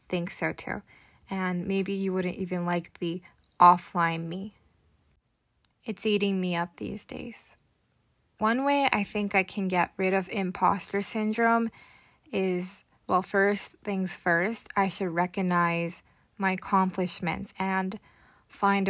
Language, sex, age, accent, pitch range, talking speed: English, female, 20-39, American, 175-200 Hz, 130 wpm